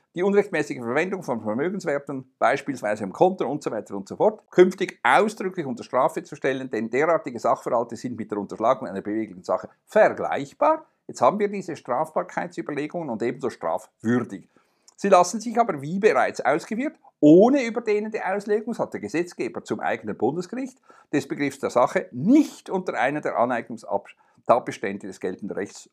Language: German